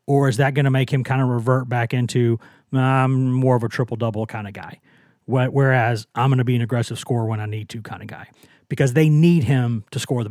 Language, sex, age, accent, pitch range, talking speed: English, male, 30-49, American, 125-145 Hz, 255 wpm